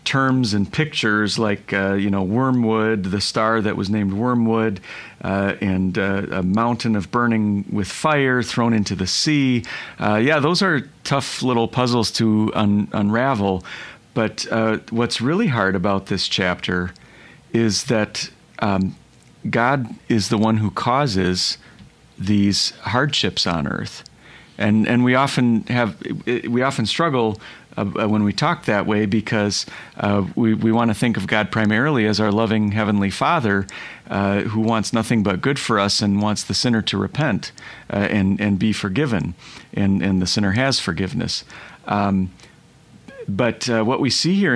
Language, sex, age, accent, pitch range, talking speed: English, male, 40-59, American, 100-120 Hz, 160 wpm